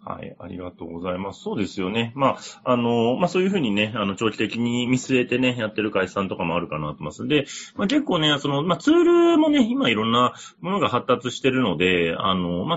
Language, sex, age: Japanese, male, 30-49